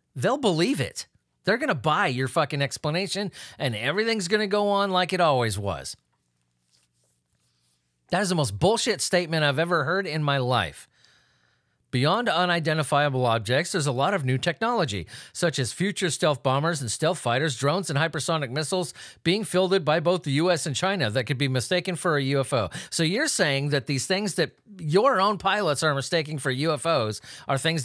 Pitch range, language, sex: 125-175 Hz, English, male